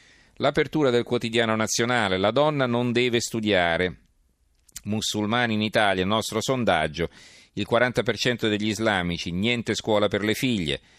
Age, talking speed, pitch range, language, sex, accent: 40-59, 125 wpm, 90-115 Hz, Italian, male, native